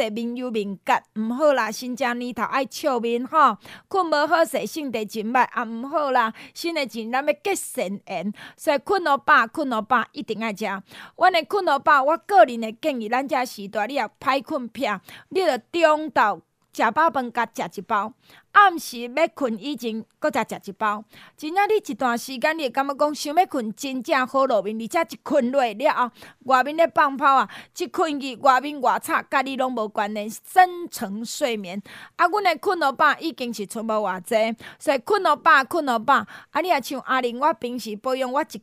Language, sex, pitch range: Chinese, female, 230-310 Hz